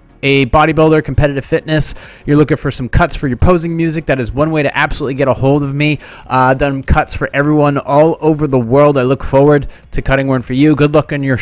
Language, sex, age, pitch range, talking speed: English, male, 30-49, 125-155 Hz, 235 wpm